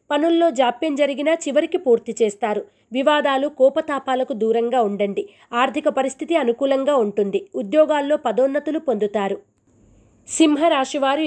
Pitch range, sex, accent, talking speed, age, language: 230-295 Hz, female, native, 95 wpm, 30-49, Telugu